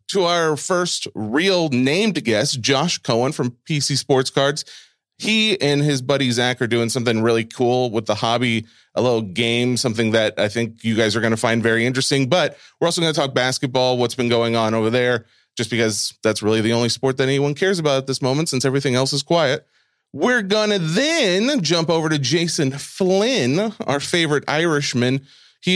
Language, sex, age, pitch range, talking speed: English, male, 30-49, 115-160 Hz, 195 wpm